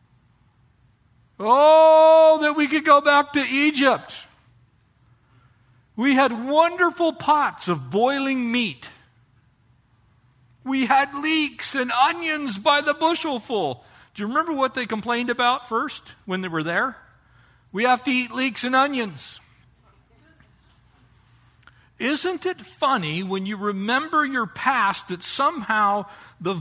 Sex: male